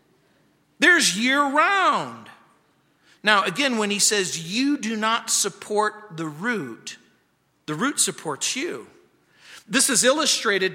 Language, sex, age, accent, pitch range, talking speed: English, male, 40-59, American, 180-240 Hz, 115 wpm